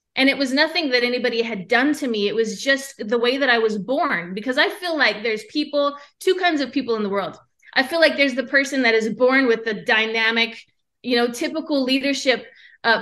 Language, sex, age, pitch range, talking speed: English, female, 20-39, 230-285 Hz, 225 wpm